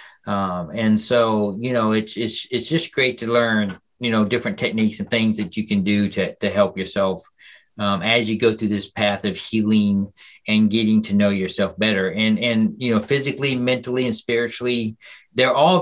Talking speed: 195 wpm